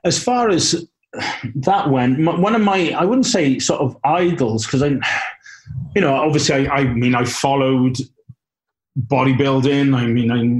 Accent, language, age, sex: British, English, 30-49, male